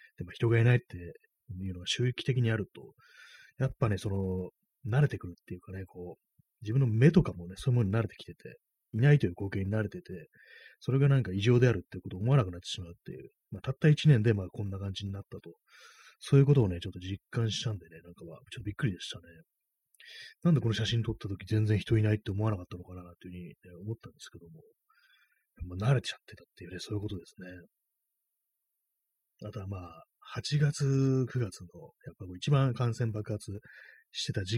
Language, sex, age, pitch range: Japanese, male, 30-49, 95-125 Hz